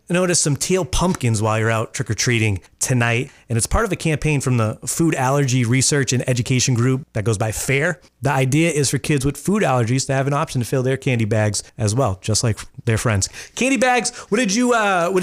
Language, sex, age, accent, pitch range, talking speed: English, male, 30-49, American, 110-145 Hz, 225 wpm